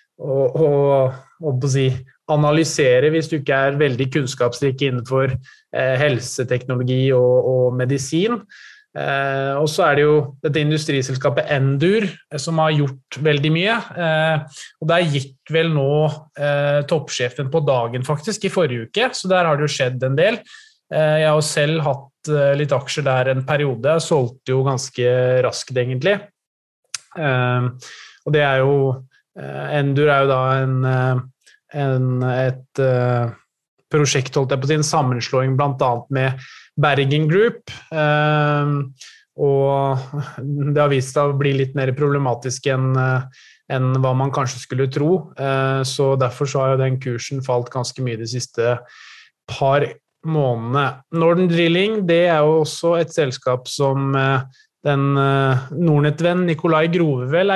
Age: 20-39